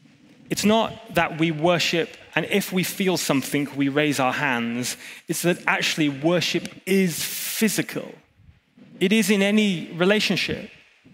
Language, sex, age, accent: English, male, 20-39, British